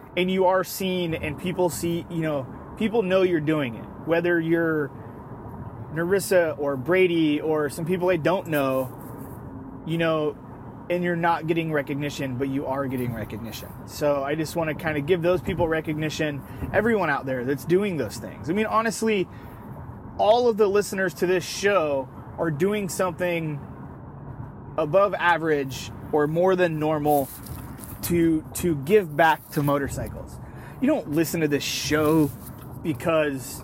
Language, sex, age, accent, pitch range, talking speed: English, male, 20-39, American, 135-180 Hz, 155 wpm